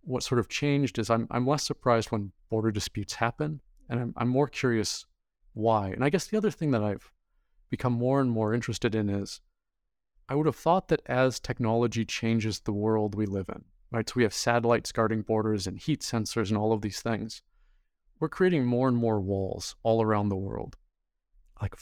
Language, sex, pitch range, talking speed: English, male, 105-125 Hz, 200 wpm